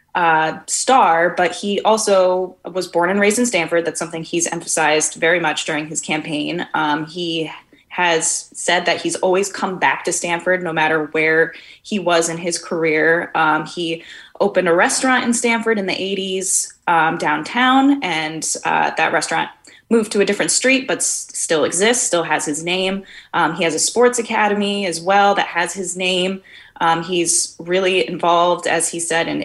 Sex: female